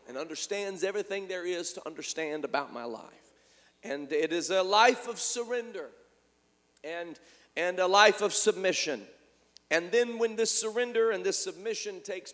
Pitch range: 175-240 Hz